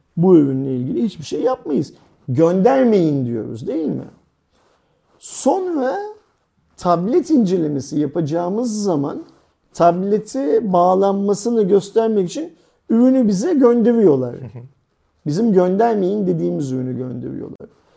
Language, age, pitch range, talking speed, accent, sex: Turkish, 50-69, 150-205 Hz, 90 wpm, native, male